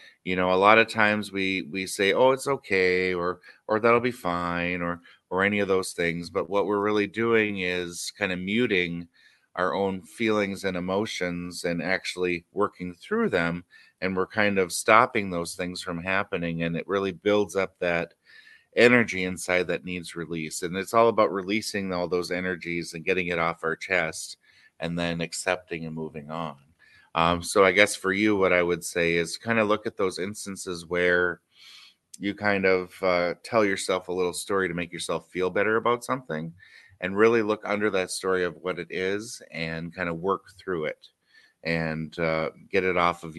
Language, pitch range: English, 85-100 Hz